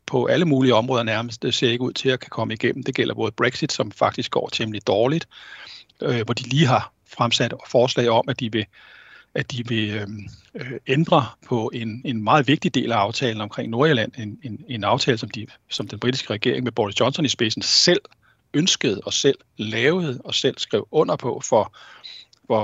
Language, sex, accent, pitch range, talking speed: Danish, male, native, 115-140 Hz, 195 wpm